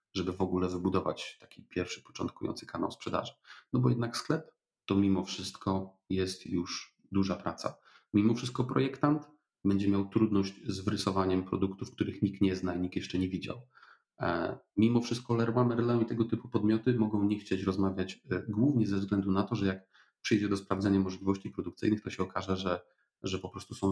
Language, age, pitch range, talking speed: Polish, 40-59, 95-120 Hz, 175 wpm